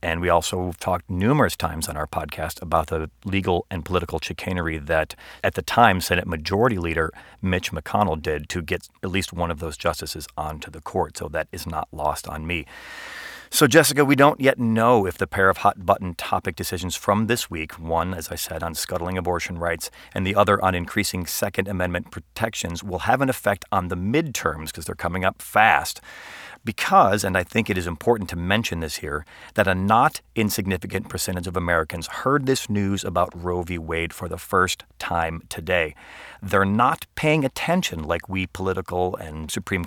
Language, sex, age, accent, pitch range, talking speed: English, male, 40-59, American, 85-105 Hz, 190 wpm